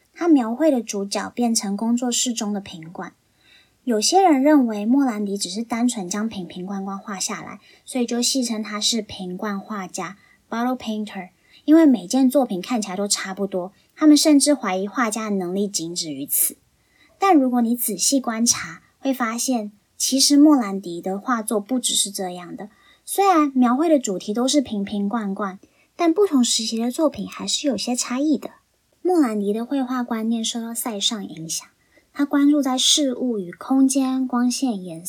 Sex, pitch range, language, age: male, 195-275 Hz, Chinese, 20-39